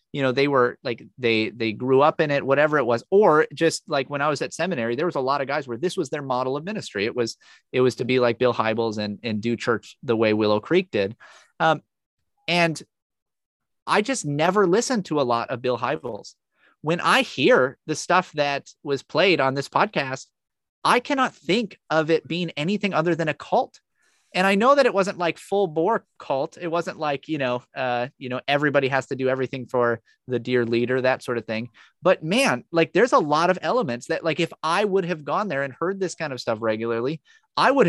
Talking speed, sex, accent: 225 wpm, male, American